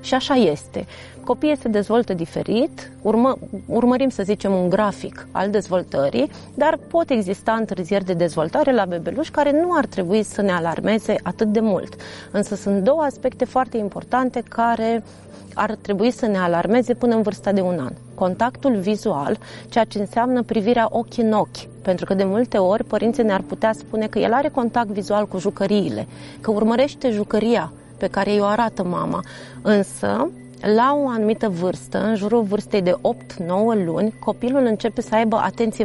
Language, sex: Romanian, female